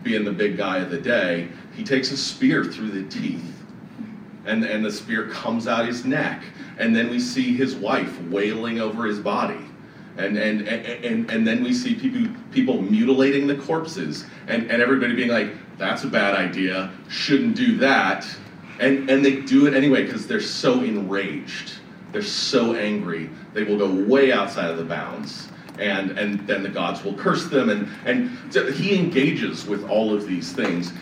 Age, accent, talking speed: 40-59, American, 185 wpm